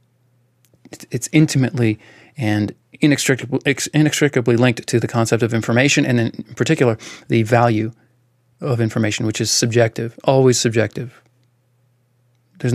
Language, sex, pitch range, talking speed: English, male, 115-130 Hz, 110 wpm